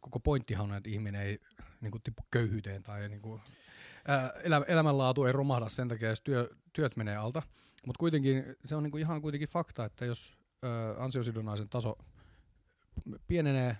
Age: 30-49